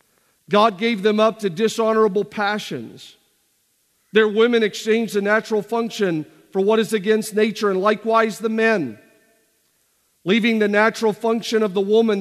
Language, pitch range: English, 210-245 Hz